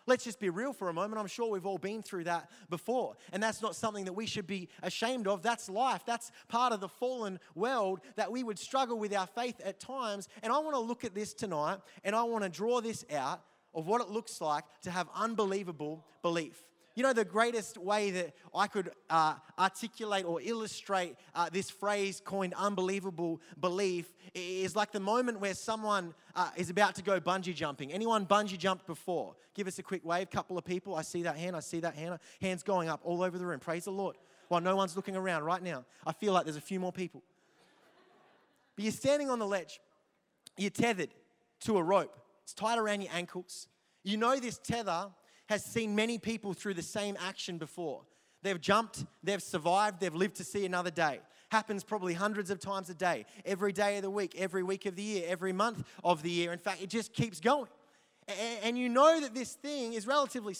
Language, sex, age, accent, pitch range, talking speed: English, male, 20-39, Australian, 180-220 Hz, 215 wpm